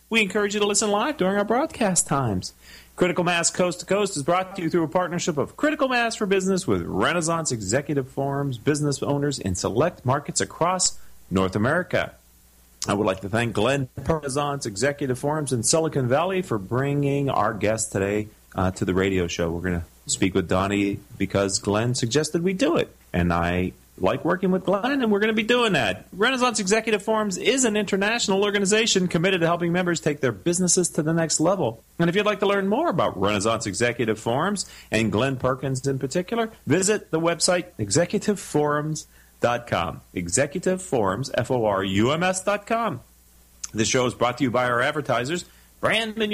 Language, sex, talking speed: English, male, 180 wpm